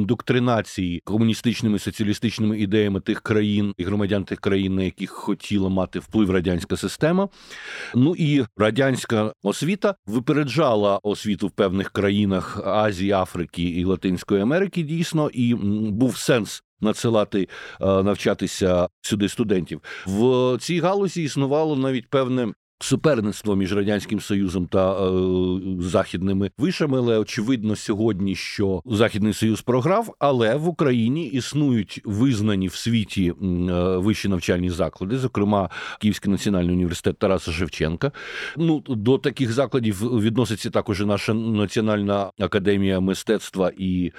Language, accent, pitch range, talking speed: Ukrainian, native, 95-125 Hz, 120 wpm